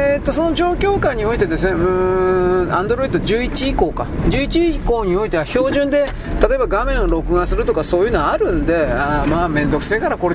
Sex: male